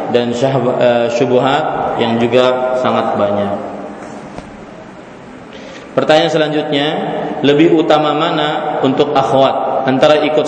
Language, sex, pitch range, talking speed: Malay, male, 130-150 Hz, 85 wpm